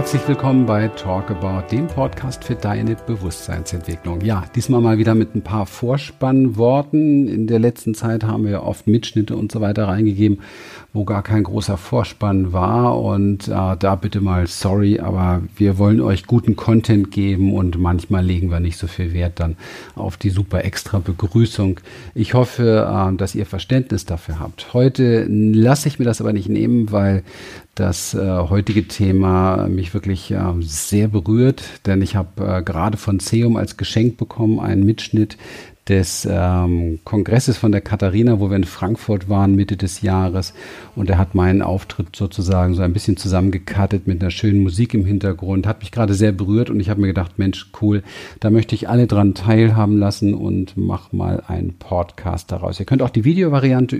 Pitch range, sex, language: 95-110 Hz, male, German